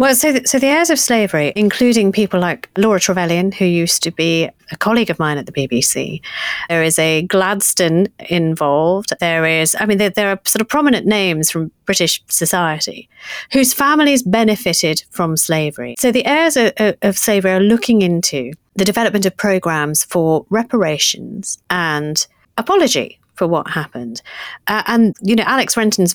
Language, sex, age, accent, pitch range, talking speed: English, female, 30-49, British, 160-210 Hz, 170 wpm